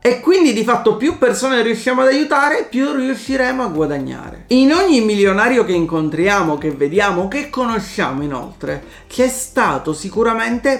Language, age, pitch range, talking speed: Italian, 40-59, 175-255 Hz, 150 wpm